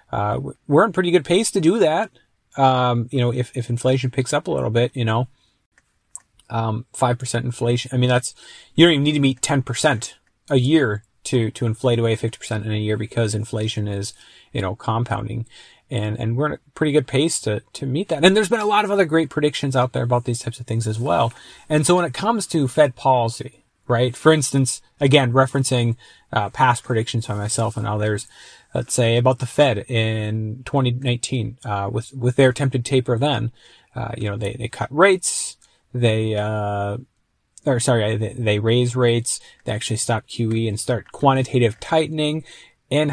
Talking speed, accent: 195 wpm, American